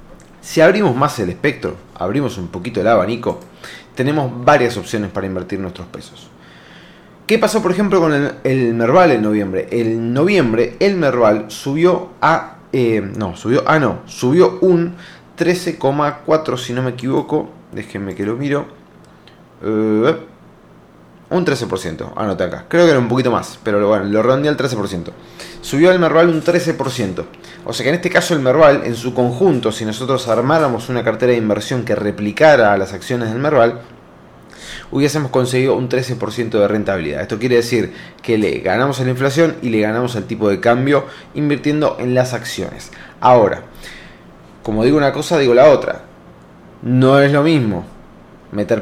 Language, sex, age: Spanish, male, 30-49